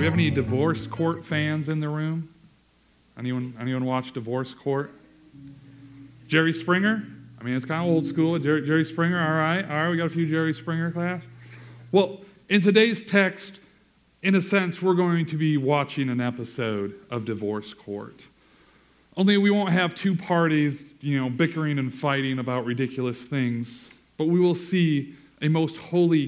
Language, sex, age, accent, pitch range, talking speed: English, male, 40-59, American, 120-165 Hz, 175 wpm